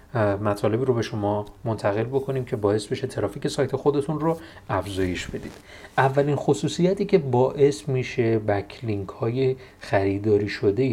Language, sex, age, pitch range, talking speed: Persian, male, 40-59, 105-145 Hz, 130 wpm